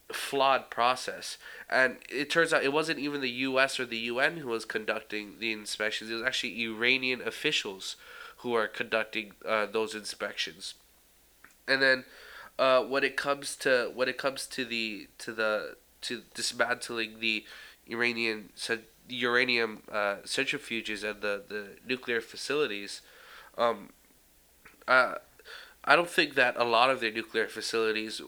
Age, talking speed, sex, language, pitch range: 20-39, 145 wpm, male, English, 110-125 Hz